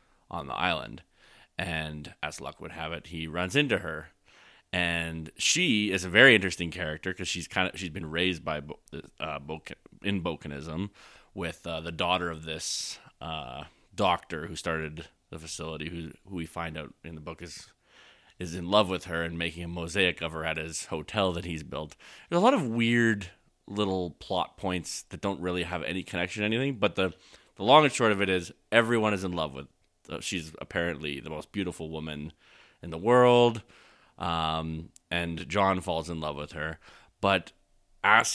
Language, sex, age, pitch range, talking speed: English, male, 30-49, 80-95 Hz, 190 wpm